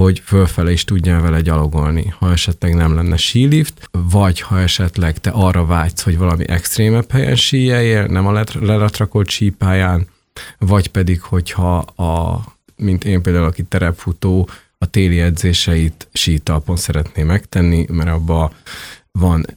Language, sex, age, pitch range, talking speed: Hungarian, male, 30-49, 90-100 Hz, 135 wpm